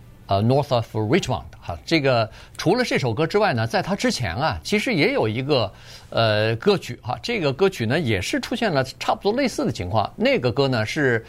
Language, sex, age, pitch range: Chinese, male, 50-69, 110-155 Hz